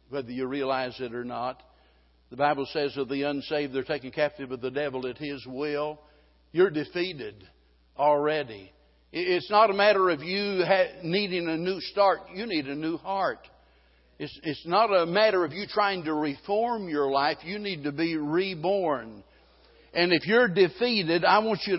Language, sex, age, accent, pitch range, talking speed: English, male, 60-79, American, 150-205 Hz, 170 wpm